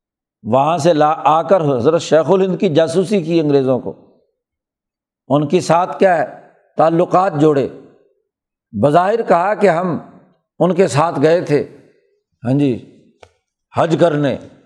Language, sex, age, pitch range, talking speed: Urdu, male, 60-79, 150-195 Hz, 135 wpm